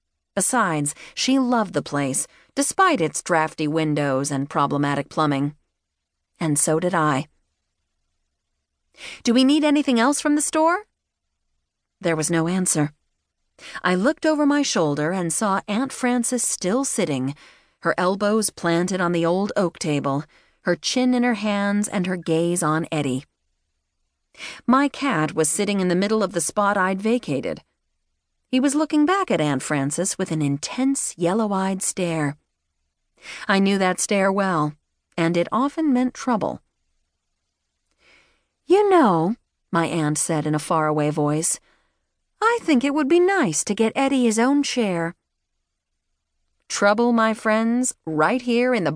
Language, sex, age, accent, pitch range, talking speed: English, female, 40-59, American, 150-235 Hz, 145 wpm